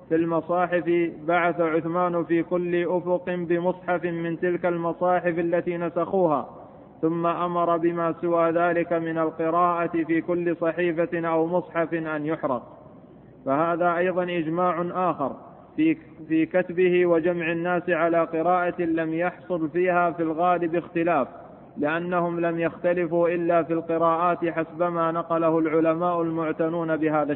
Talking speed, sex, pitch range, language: 120 wpm, male, 165-175 Hz, Arabic